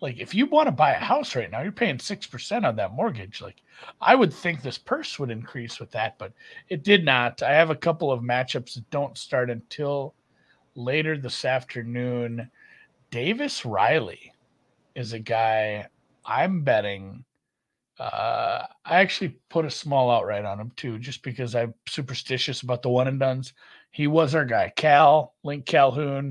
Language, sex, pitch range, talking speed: English, male, 120-155 Hz, 170 wpm